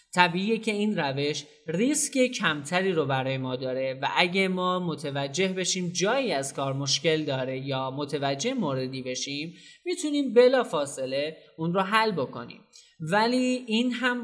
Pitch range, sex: 140-200 Hz, male